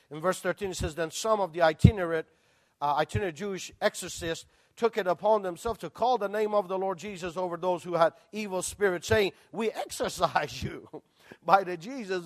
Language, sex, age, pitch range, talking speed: English, male, 50-69, 165-210 Hz, 190 wpm